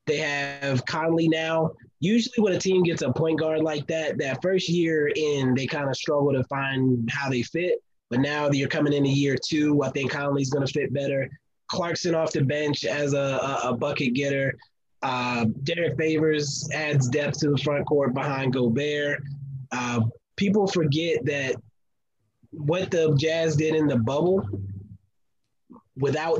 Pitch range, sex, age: 135-160 Hz, male, 20-39